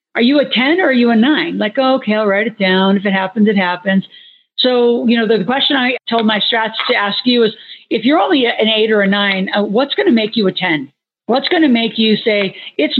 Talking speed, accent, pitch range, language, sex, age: 260 wpm, American, 200-235 Hz, English, female, 50-69